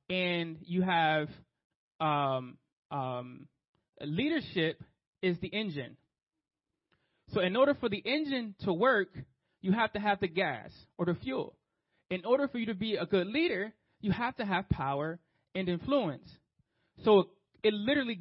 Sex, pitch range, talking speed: male, 155-200 Hz, 150 wpm